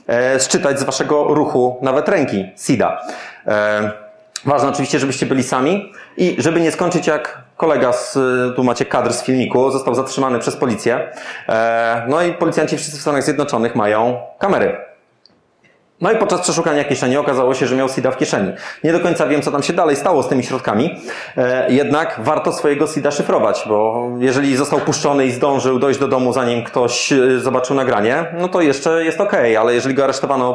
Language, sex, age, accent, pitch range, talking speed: Polish, male, 30-49, native, 120-145 Hz, 175 wpm